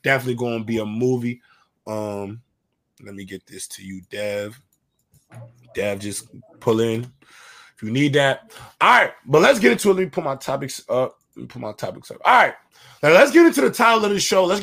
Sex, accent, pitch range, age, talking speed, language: male, American, 135-195 Hz, 20-39, 220 wpm, English